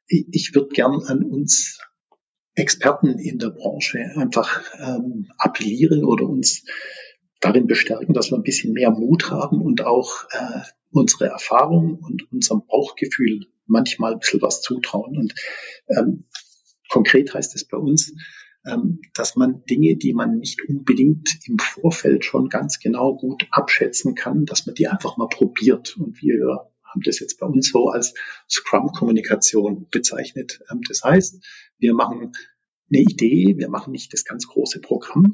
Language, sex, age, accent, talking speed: German, male, 50-69, German, 150 wpm